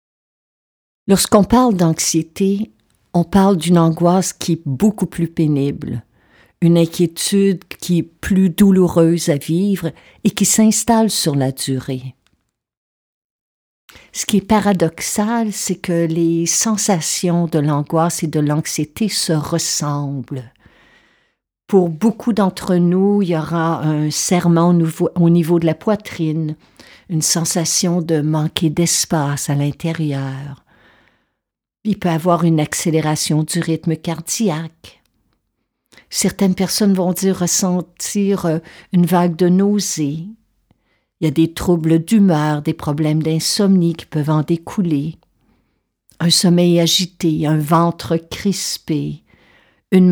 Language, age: French, 50-69